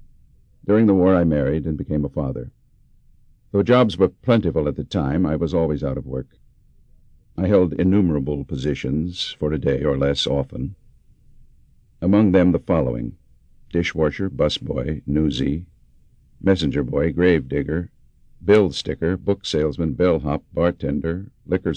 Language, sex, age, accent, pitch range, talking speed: English, male, 60-79, American, 75-95 Hz, 140 wpm